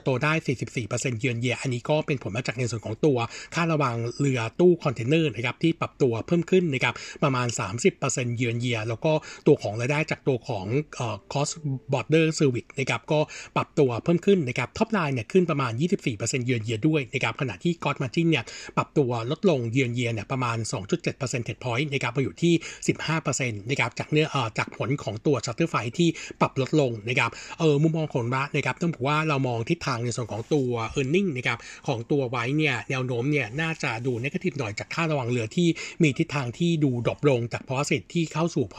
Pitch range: 125-155 Hz